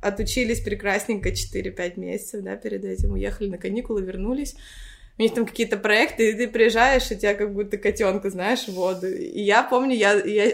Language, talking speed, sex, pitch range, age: Russian, 180 wpm, female, 185-230 Hz, 20-39